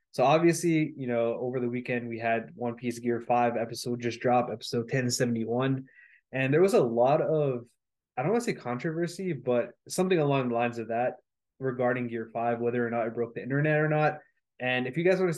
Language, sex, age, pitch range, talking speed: English, male, 20-39, 120-145 Hz, 215 wpm